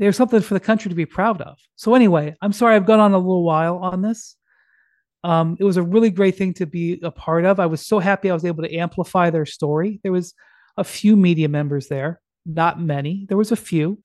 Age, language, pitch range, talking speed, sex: 30-49, English, 170-210 Hz, 245 wpm, male